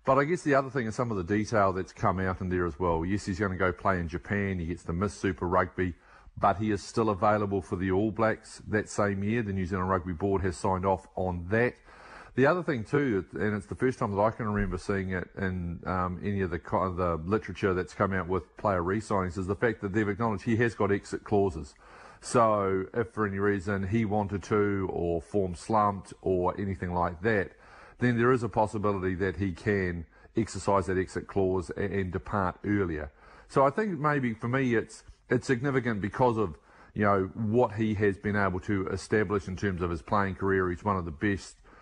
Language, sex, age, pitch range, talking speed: English, male, 40-59, 90-110 Hz, 220 wpm